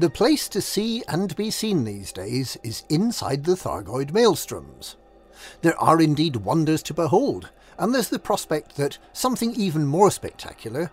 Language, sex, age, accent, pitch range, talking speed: English, male, 50-69, British, 130-195 Hz, 165 wpm